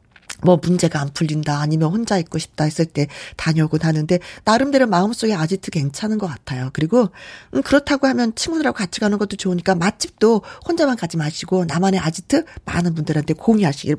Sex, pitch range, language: female, 175-270 Hz, Korean